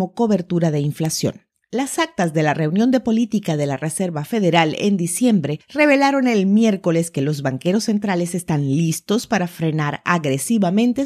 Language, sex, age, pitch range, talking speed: Spanish, female, 40-59, 165-225 Hz, 150 wpm